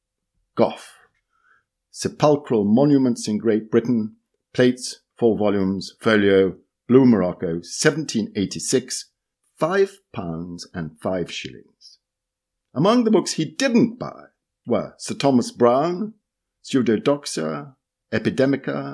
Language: English